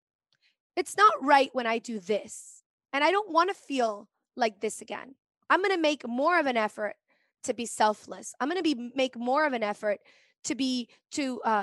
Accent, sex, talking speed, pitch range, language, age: American, female, 205 wpm, 235-300 Hz, English, 20-39